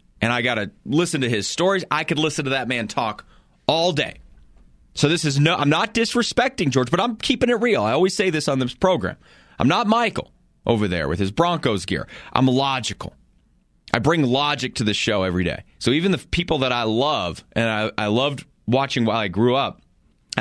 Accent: American